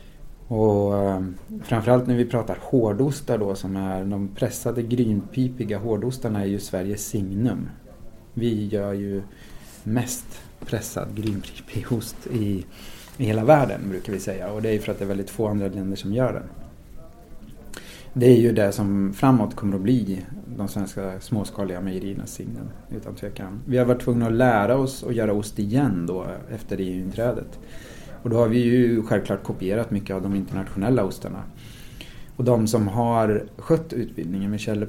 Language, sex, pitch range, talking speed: English, male, 100-120 Hz, 165 wpm